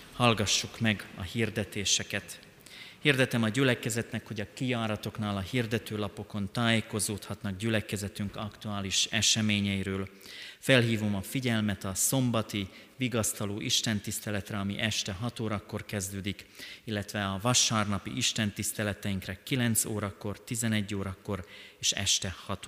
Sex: male